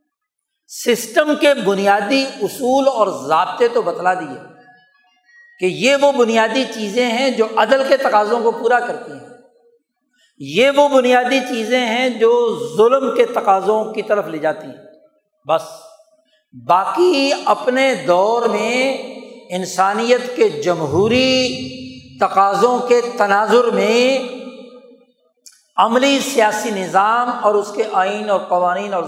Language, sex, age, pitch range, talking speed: Urdu, male, 60-79, 205-265 Hz, 120 wpm